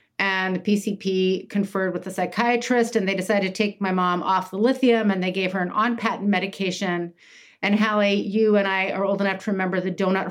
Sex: female